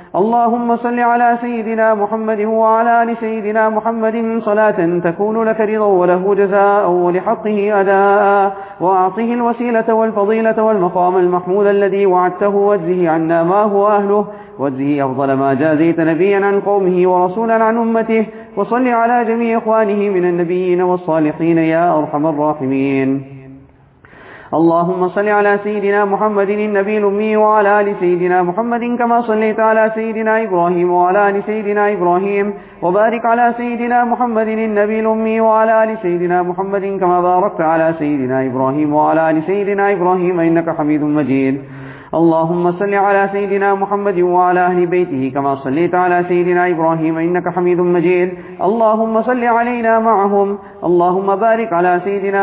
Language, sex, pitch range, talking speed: English, male, 175-220 Hz, 130 wpm